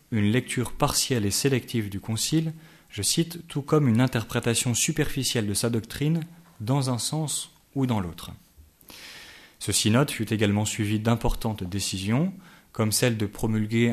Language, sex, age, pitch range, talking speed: French, male, 30-49, 105-130 Hz, 145 wpm